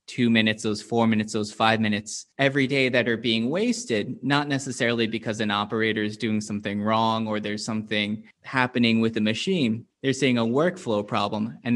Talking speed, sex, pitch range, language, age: 185 wpm, male, 110-125 Hz, English, 20-39